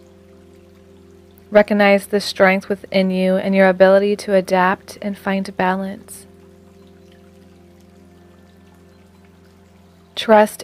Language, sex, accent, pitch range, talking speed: English, female, American, 175-205 Hz, 80 wpm